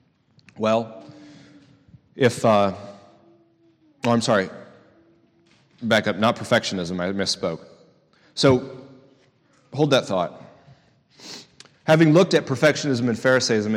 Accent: American